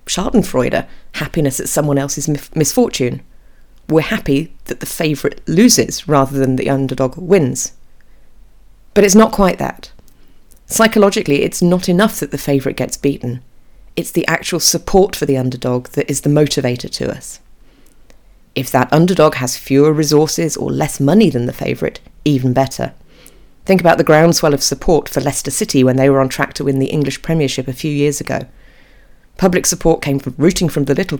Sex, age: female, 40-59